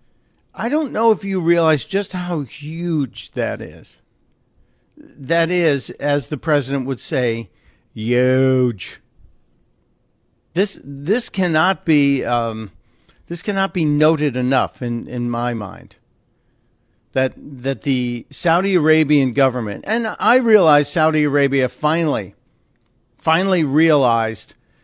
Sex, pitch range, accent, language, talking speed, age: male, 120-155 Hz, American, English, 115 wpm, 50-69